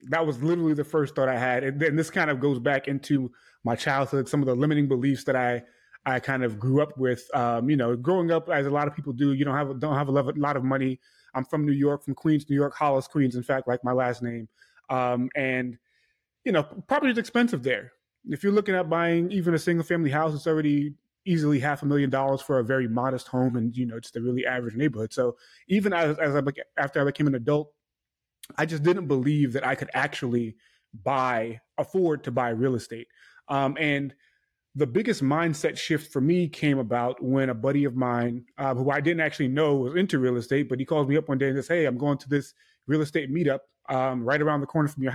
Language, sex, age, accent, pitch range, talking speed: English, male, 20-39, American, 130-155 Hz, 240 wpm